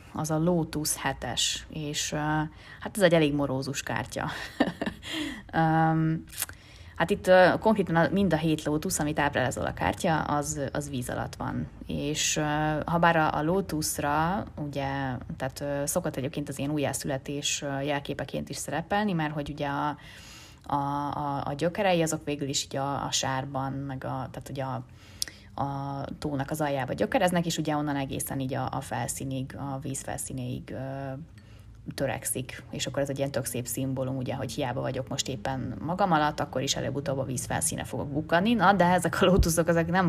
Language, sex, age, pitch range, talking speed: Hungarian, female, 20-39, 135-155 Hz, 170 wpm